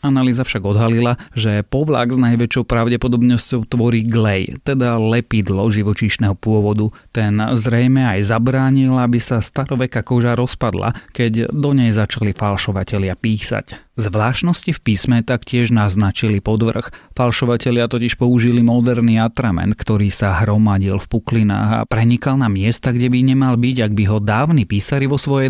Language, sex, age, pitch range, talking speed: Slovak, male, 30-49, 105-120 Hz, 140 wpm